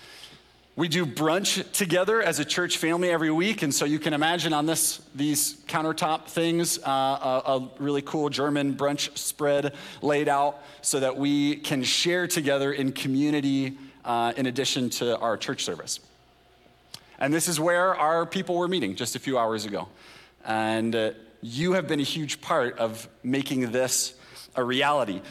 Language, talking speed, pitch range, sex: English, 170 wpm, 130-165 Hz, male